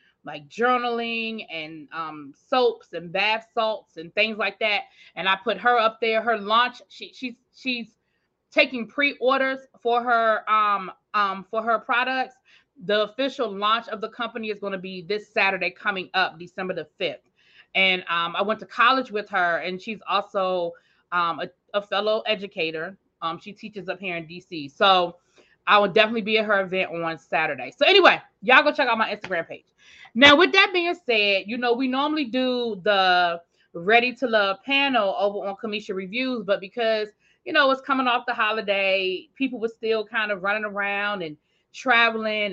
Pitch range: 190-240 Hz